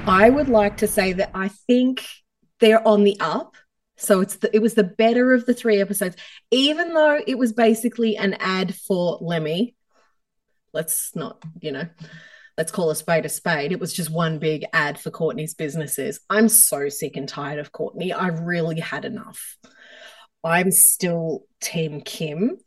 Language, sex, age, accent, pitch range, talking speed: English, female, 30-49, Australian, 190-245 Hz, 175 wpm